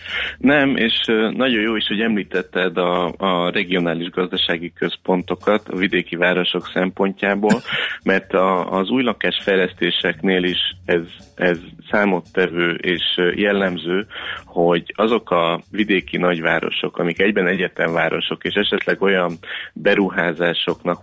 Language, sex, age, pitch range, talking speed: Hungarian, male, 30-49, 85-95 Hz, 110 wpm